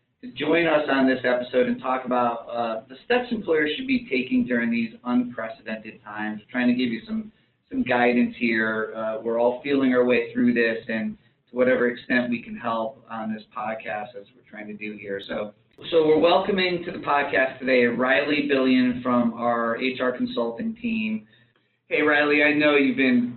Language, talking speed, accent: English, 185 wpm, American